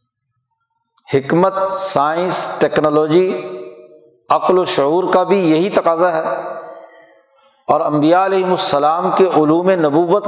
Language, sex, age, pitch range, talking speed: Urdu, male, 60-79, 150-200 Hz, 105 wpm